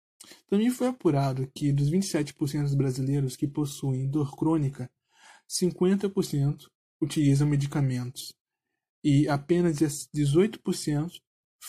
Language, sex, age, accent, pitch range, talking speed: Portuguese, male, 20-39, Brazilian, 140-170 Hz, 90 wpm